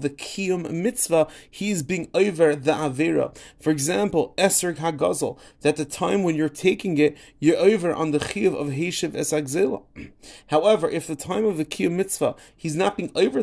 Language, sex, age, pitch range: English, male, 30-49, 140-175 Hz